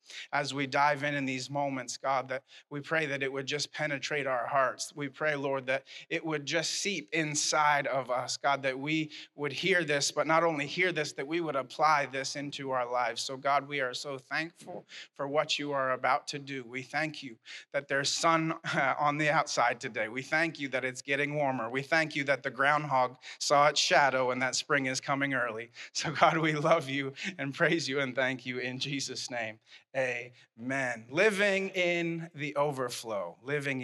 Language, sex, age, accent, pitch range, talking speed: English, male, 30-49, American, 130-150 Hz, 200 wpm